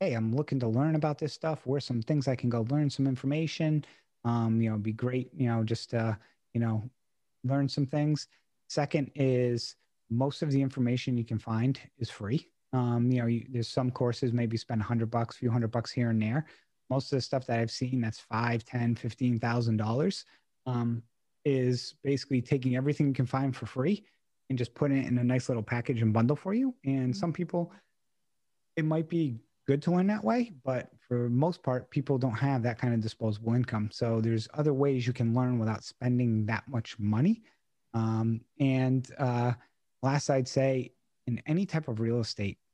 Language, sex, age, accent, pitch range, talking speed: English, male, 30-49, American, 115-135 Hz, 205 wpm